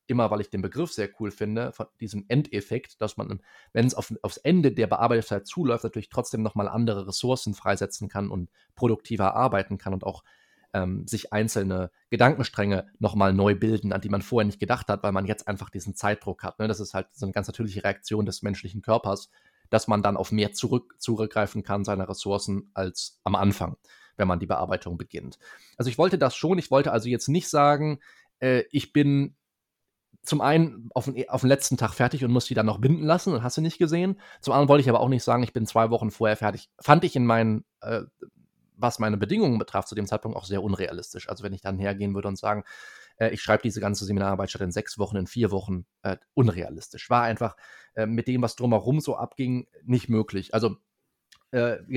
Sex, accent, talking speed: male, German, 215 wpm